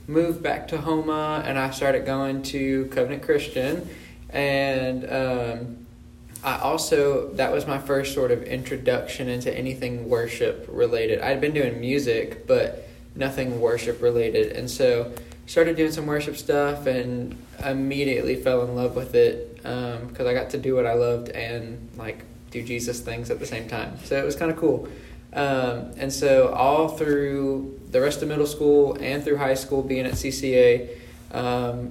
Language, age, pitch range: English, 20-39, 125-150 Hz